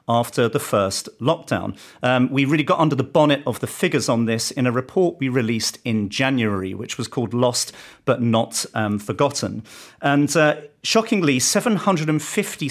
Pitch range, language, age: 115-150 Hz, English, 40-59